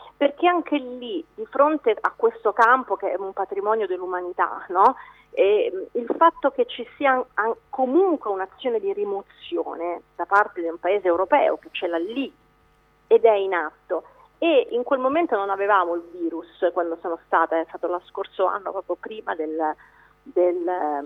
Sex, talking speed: female, 165 wpm